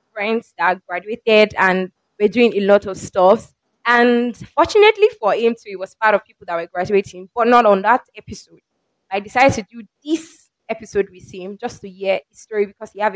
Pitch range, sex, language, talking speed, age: 195-245 Hz, female, English, 205 wpm, 20-39